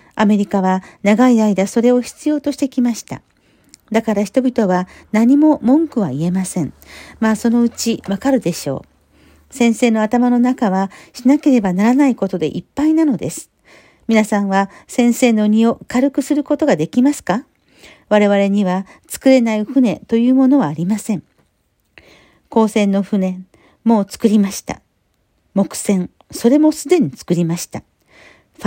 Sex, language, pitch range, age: female, Japanese, 195-265 Hz, 50-69